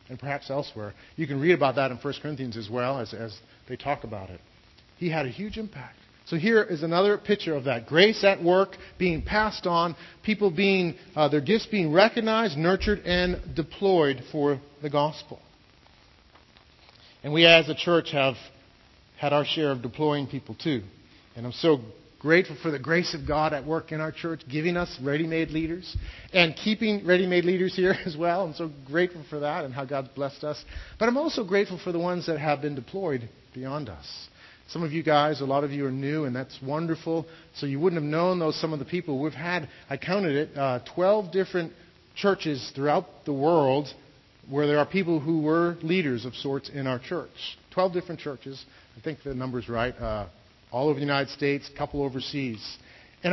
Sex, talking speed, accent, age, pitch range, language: male, 200 wpm, American, 40-59, 135-180 Hz, English